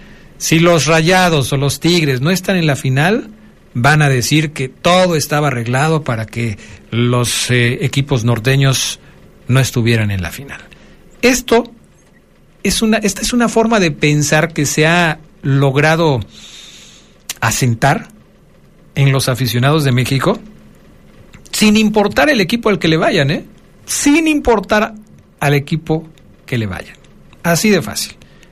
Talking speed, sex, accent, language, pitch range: 135 wpm, male, Mexican, Spanish, 130-195 Hz